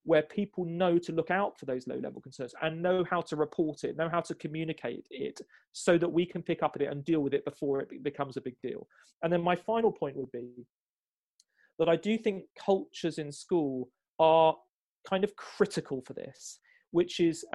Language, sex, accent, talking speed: English, male, British, 210 wpm